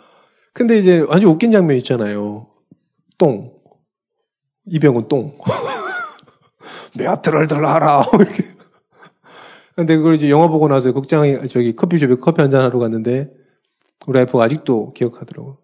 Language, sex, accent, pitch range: Korean, male, native, 140-210 Hz